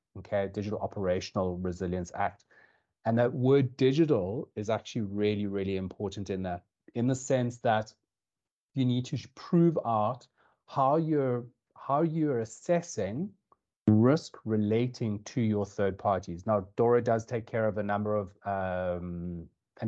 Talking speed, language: 140 wpm, English